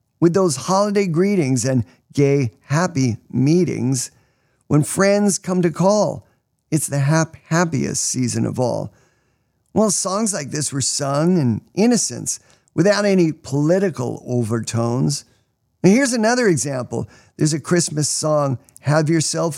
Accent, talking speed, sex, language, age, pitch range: American, 125 wpm, male, English, 50-69, 130-175 Hz